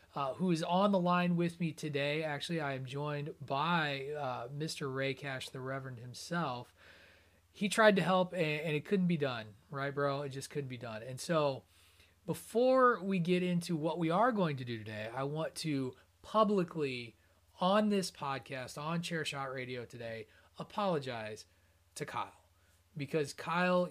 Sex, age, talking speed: male, 30-49, 170 wpm